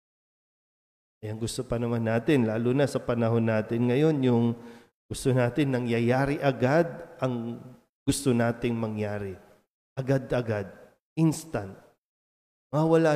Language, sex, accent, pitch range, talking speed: Filipino, male, native, 115-160 Hz, 105 wpm